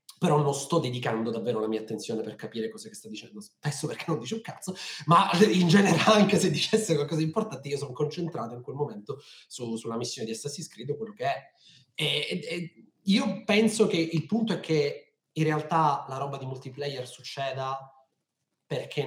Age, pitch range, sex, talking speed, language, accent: 30-49, 110-160 Hz, male, 190 wpm, Italian, native